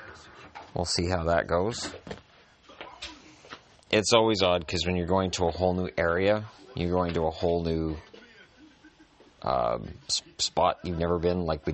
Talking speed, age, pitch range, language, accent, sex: 155 wpm, 30-49, 85-100 Hz, English, American, male